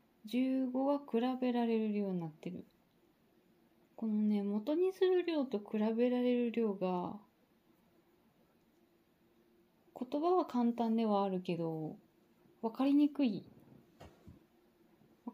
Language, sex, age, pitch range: Japanese, female, 20-39, 195-265 Hz